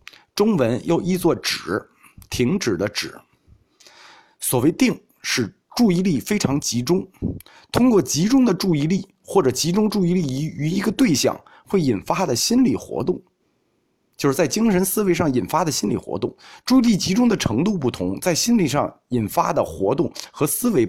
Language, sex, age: Chinese, male, 50-69